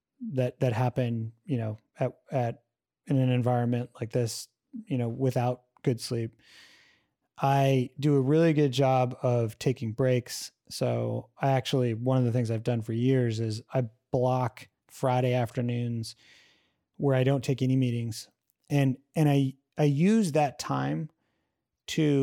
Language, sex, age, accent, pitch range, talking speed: English, male, 30-49, American, 125-145 Hz, 150 wpm